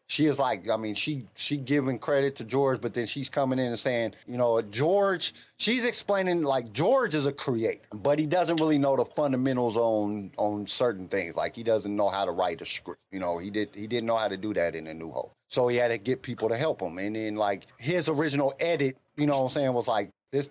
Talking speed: 250 wpm